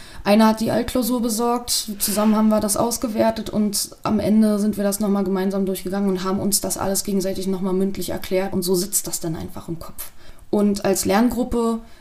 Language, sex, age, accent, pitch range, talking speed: German, female, 20-39, German, 195-230 Hz, 195 wpm